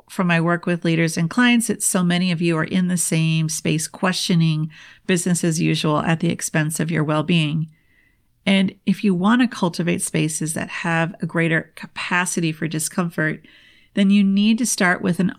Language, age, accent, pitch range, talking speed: English, 40-59, American, 165-195 Hz, 190 wpm